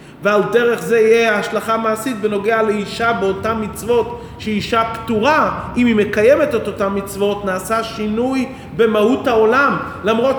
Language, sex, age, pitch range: English, male, 30-49, 195-235 Hz